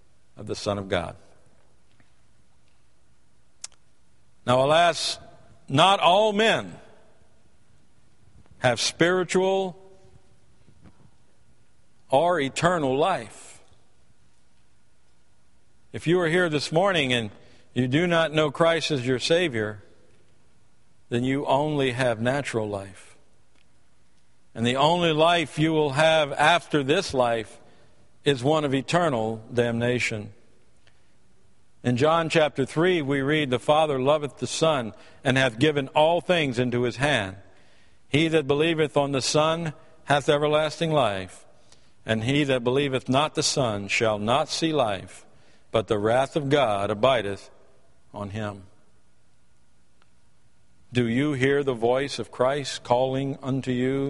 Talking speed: 120 wpm